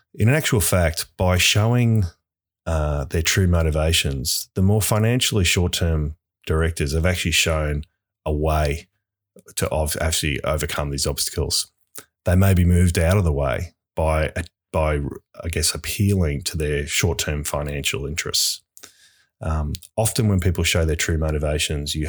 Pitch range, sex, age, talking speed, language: 75-95 Hz, male, 30-49, 140 wpm, English